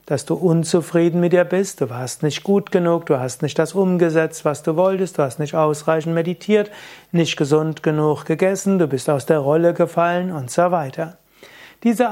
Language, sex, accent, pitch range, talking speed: German, male, German, 155-190 Hz, 190 wpm